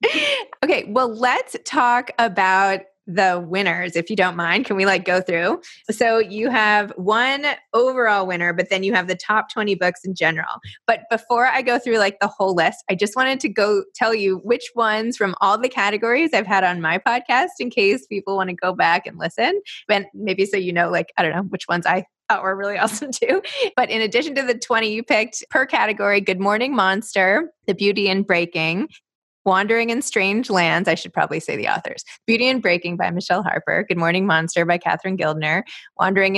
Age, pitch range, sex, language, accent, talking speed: 20-39, 180-235 Hz, female, English, American, 205 wpm